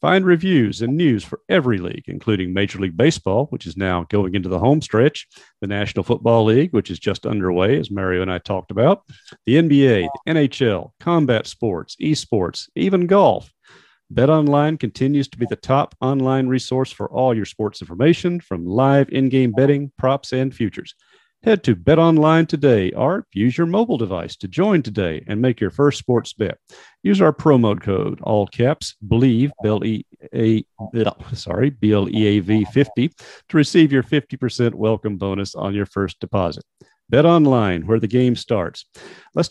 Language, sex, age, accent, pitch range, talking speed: English, male, 50-69, American, 105-145 Hz, 165 wpm